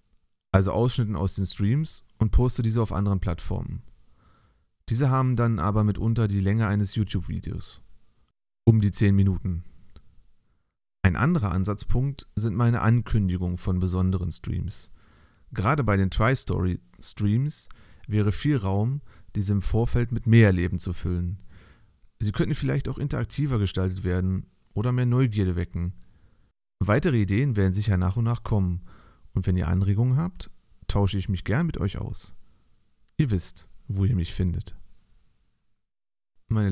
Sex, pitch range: male, 95-120 Hz